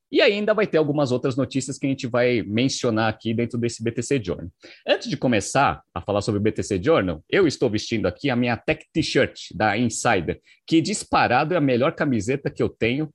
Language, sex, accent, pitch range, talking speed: Portuguese, male, Brazilian, 110-160 Hz, 205 wpm